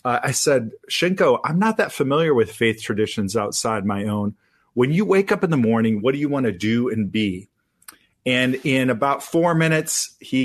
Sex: male